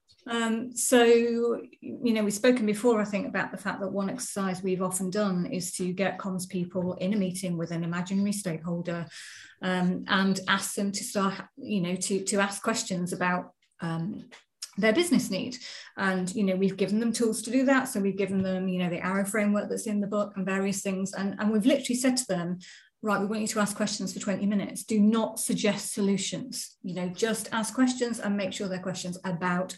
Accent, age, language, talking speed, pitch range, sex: British, 30-49, English, 210 wpm, 190-235 Hz, female